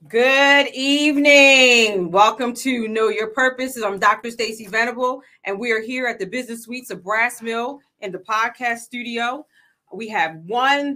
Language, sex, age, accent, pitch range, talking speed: English, female, 30-49, American, 215-270 Hz, 160 wpm